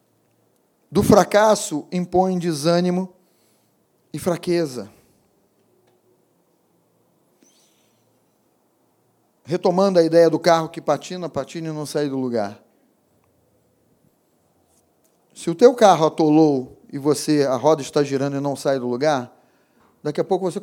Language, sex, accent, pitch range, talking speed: Portuguese, male, Brazilian, 145-175 Hz, 115 wpm